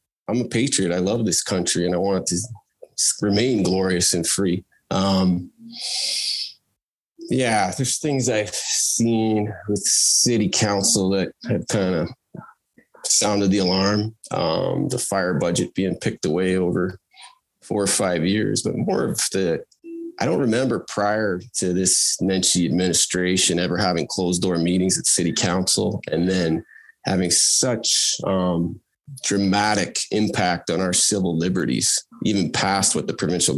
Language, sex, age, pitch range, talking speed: English, male, 20-39, 90-105 Hz, 145 wpm